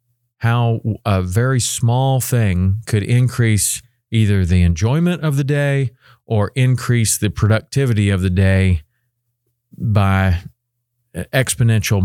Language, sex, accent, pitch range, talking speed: English, male, American, 95-120 Hz, 110 wpm